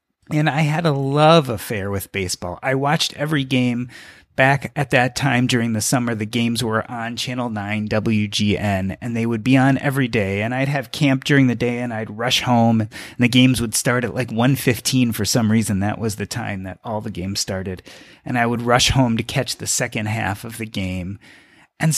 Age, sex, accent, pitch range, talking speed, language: 30-49, male, American, 115-155 Hz, 215 wpm, English